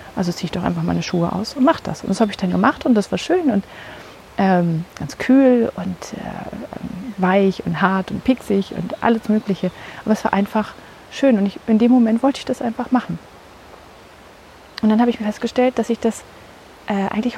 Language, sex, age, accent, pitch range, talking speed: German, female, 30-49, German, 180-225 Hz, 210 wpm